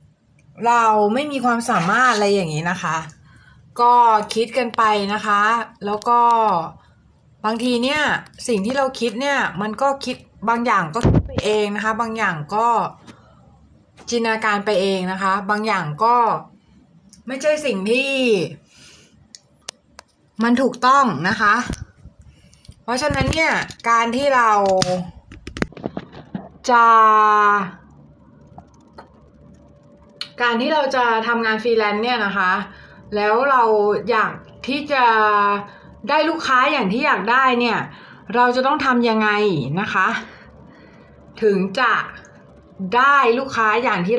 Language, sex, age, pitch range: Thai, female, 20-39, 210-255 Hz